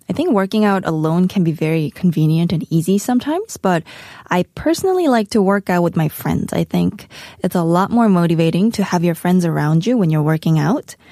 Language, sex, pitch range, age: Korean, female, 165-215 Hz, 20-39